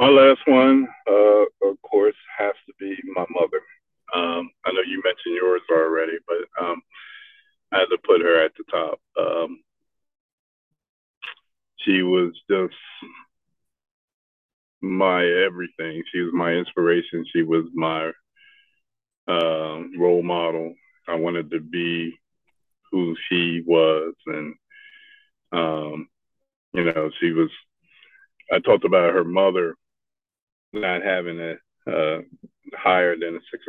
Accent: American